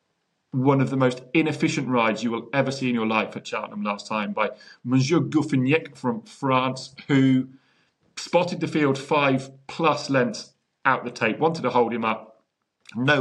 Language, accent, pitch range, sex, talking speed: English, British, 110-140 Hz, male, 175 wpm